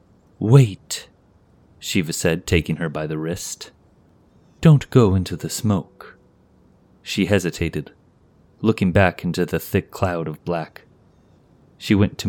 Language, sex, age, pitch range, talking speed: English, male, 30-49, 85-100 Hz, 125 wpm